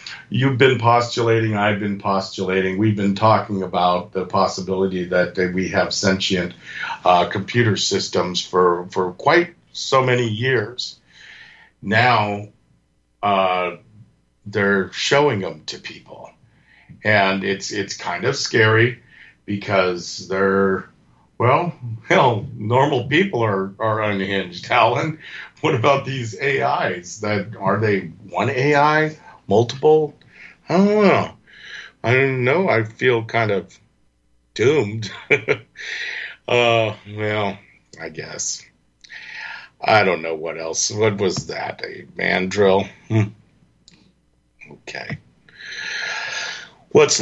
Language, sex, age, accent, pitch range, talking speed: English, male, 50-69, American, 95-125 Hz, 110 wpm